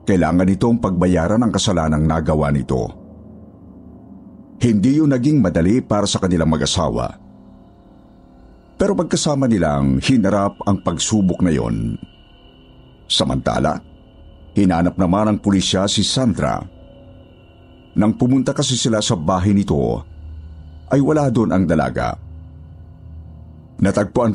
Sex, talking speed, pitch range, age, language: male, 105 wpm, 80-115 Hz, 50-69, Filipino